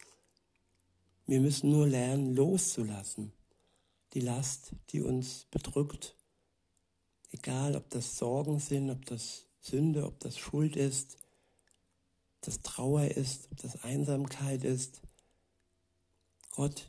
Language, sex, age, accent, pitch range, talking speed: German, male, 60-79, German, 90-140 Hz, 110 wpm